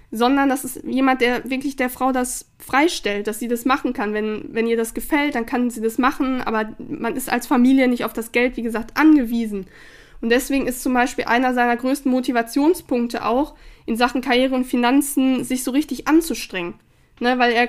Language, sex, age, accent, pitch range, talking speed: German, female, 10-29, German, 230-265 Hz, 200 wpm